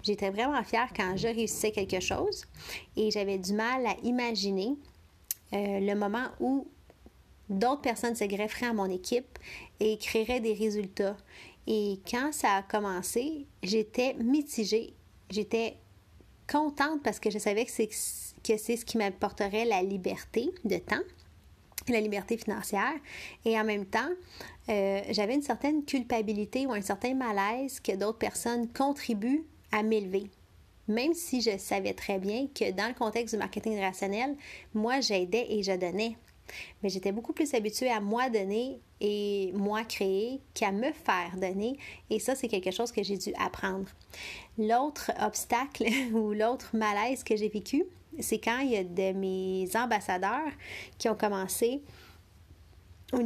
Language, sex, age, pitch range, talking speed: French, female, 30-49, 200-245 Hz, 155 wpm